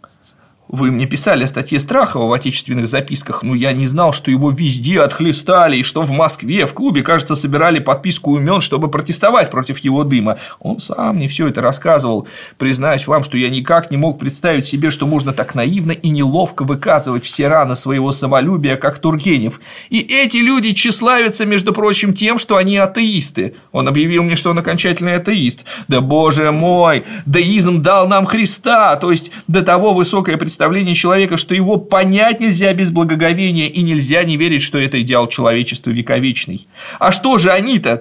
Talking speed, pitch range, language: 175 wpm, 140-190 Hz, Russian